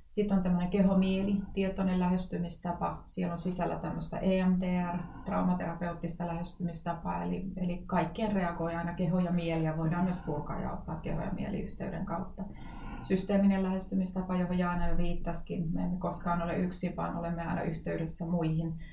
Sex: female